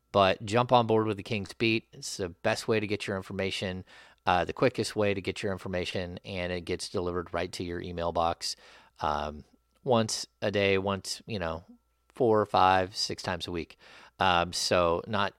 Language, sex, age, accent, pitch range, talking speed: English, male, 30-49, American, 90-110 Hz, 195 wpm